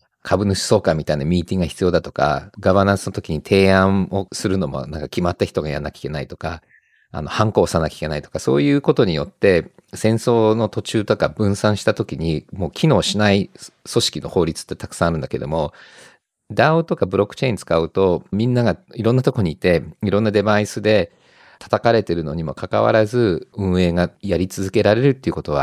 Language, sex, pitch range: Japanese, male, 90-115 Hz